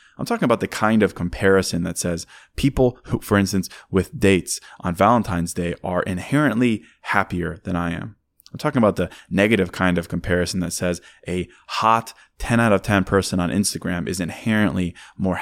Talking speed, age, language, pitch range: 180 wpm, 20-39, English, 90-110 Hz